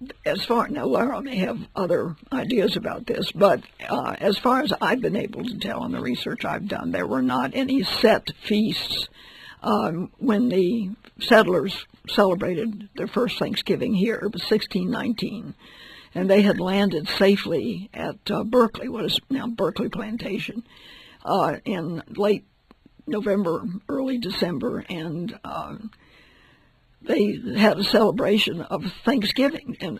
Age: 60-79